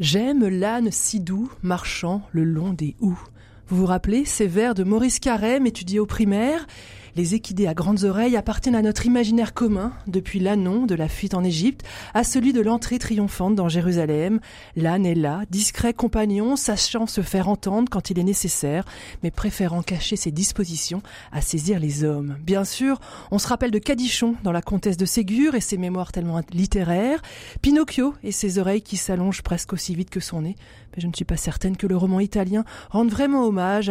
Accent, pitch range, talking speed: French, 175-215 Hz, 190 wpm